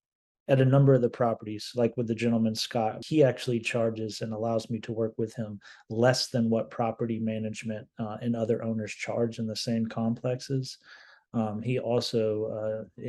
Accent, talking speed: American, 180 wpm